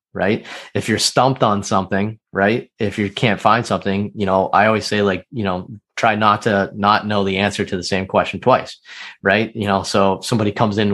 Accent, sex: American, male